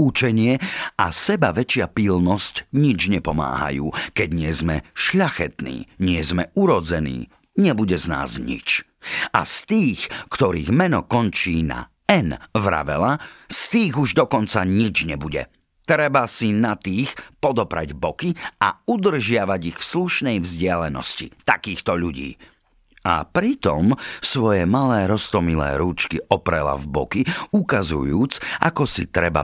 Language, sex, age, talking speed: Slovak, male, 50-69, 120 wpm